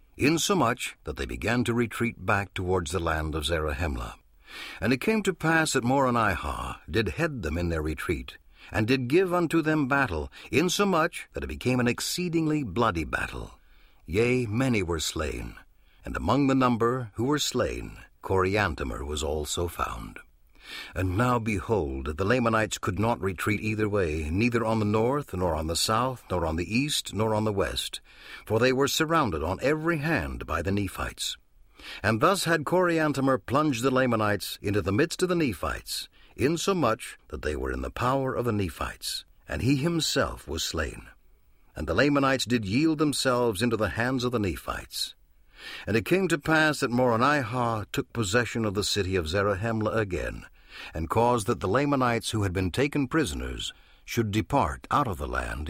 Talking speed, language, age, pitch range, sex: 175 wpm, English, 60-79, 95-135 Hz, male